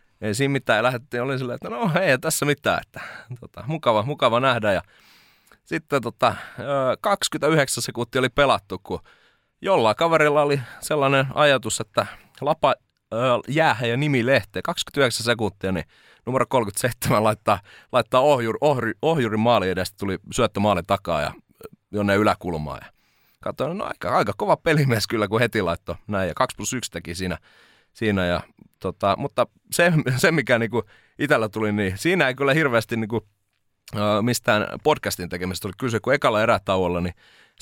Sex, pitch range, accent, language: male, 100-135 Hz, native, Finnish